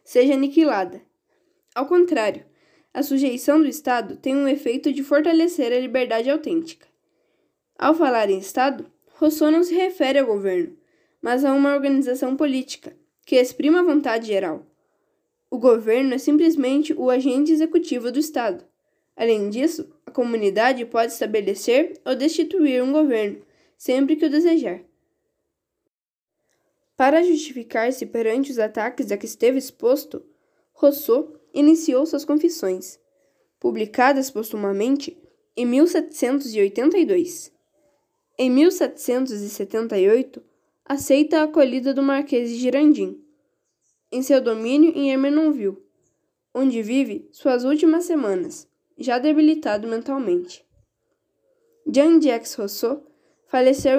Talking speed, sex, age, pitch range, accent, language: 110 wpm, female, 10-29, 250-315 Hz, Brazilian, Portuguese